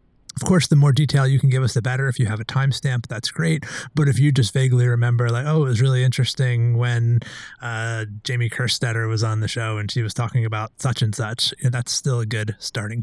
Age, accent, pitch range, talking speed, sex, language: 30-49, American, 115-140 Hz, 235 wpm, male, English